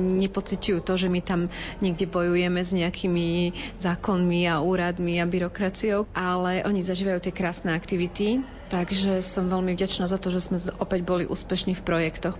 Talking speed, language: 160 wpm, Slovak